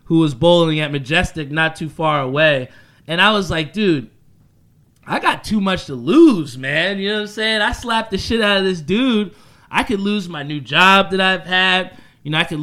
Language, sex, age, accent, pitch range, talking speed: English, male, 20-39, American, 145-185 Hz, 225 wpm